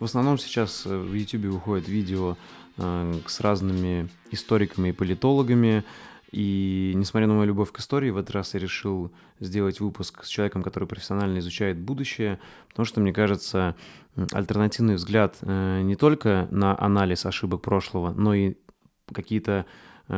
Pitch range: 90-105 Hz